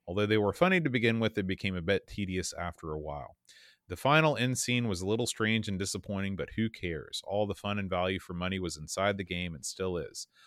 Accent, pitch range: American, 95-125 Hz